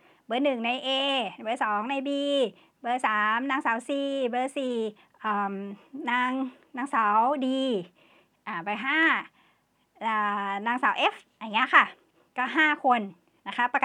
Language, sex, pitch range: English, male, 210-265 Hz